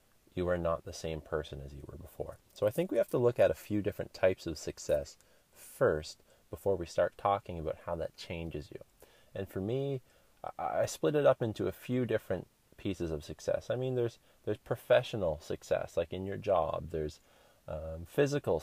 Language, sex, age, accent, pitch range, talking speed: English, male, 20-39, American, 80-110 Hz, 195 wpm